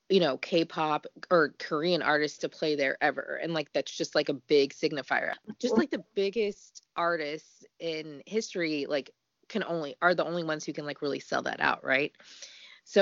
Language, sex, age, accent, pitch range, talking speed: English, female, 20-39, American, 155-195 Hz, 190 wpm